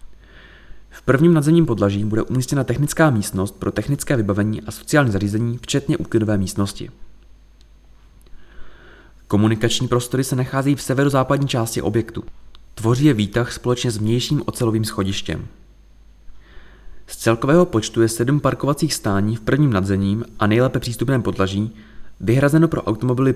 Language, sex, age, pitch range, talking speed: Czech, male, 20-39, 100-130 Hz, 125 wpm